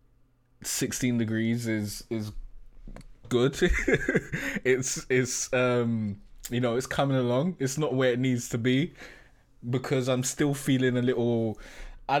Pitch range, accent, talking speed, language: 110-130 Hz, British, 135 wpm, English